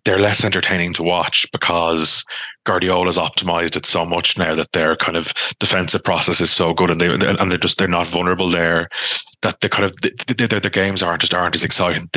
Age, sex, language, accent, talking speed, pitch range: 20-39, male, English, Irish, 200 wpm, 80-90 Hz